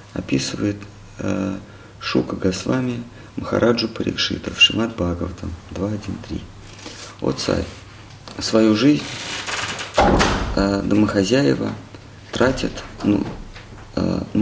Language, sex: Russian, male